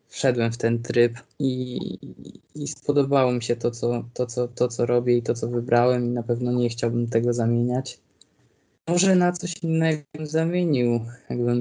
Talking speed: 175 wpm